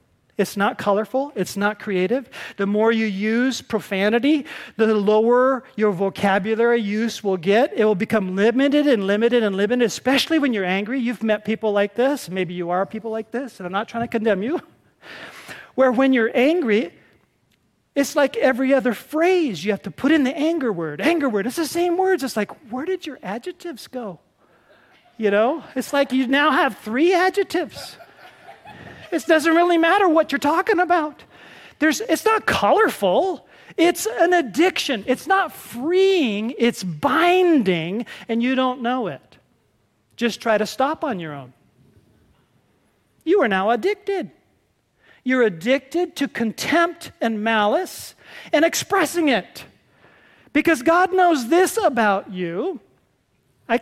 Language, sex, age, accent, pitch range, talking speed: English, male, 40-59, American, 215-320 Hz, 155 wpm